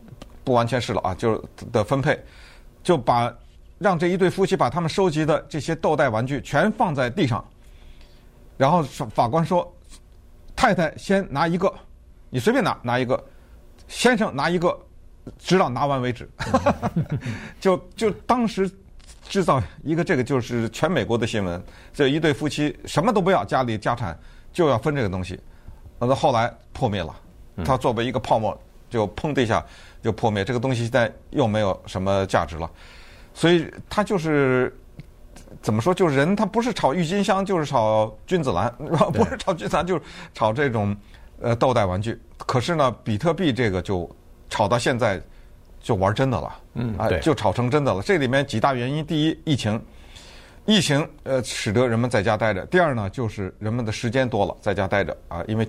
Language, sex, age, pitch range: Chinese, male, 50-69, 105-165 Hz